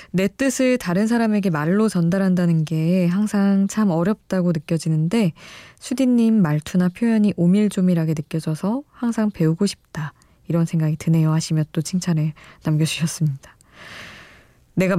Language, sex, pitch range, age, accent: Korean, female, 155-205 Hz, 20-39, native